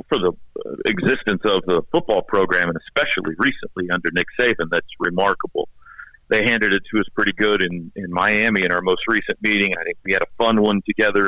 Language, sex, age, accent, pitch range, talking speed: English, male, 50-69, American, 100-115 Hz, 200 wpm